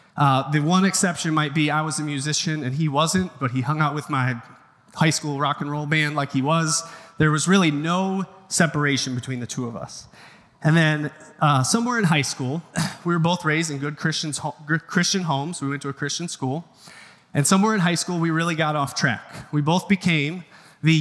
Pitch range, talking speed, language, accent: 140-170 Hz, 210 wpm, English, American